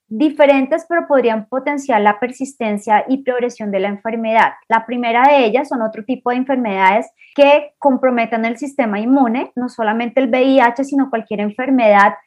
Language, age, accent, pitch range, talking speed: Spanish, 20-39, Colombian, 225-275 Hz, 155 wpm